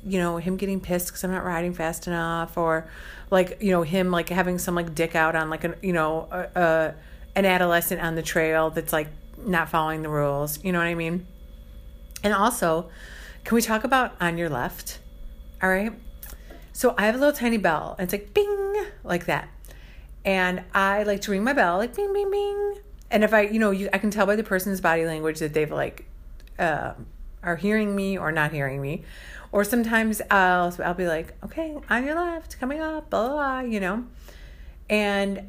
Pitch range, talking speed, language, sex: 170-215 Hz, 205 wpm, English, female